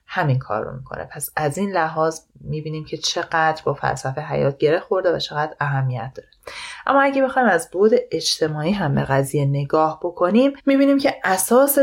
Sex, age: female, 30-49